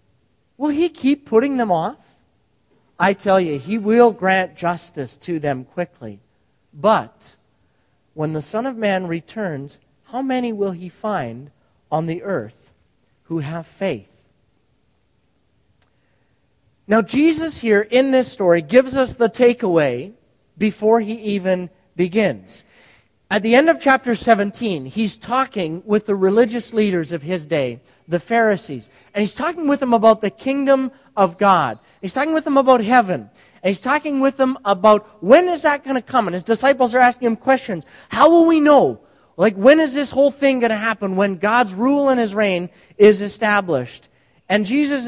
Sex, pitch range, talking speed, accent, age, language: male, 175-245 Hz, 165 wpm, American, 40-59, English